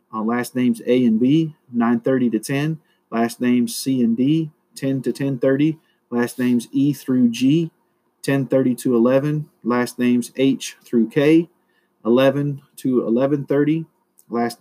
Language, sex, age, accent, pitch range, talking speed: English, male, 40-59, American, 120-145 Hz, 140 wpm